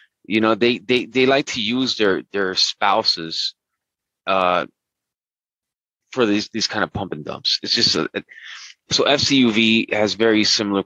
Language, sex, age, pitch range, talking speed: English, male, 20-39, 95-125 Hz, 155 wpm